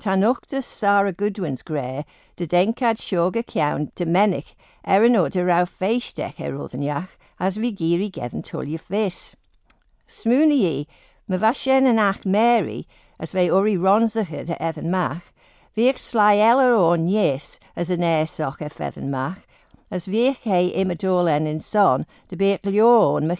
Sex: female